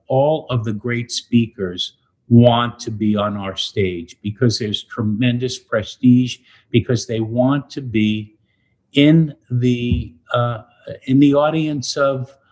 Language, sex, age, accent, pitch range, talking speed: English, male, 50-69, American, 110-135 Hz, 130 wpm